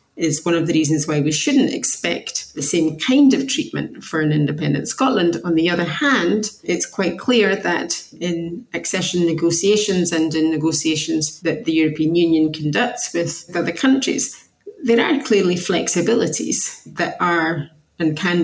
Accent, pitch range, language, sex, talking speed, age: British, 155-190 Hz, English, female, 155 wpm, 30-49